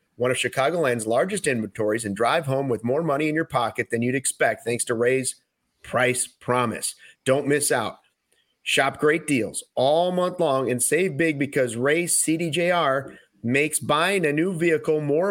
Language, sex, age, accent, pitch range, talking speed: English, male, 30-49, American, 125-160 Hz, 170 wpm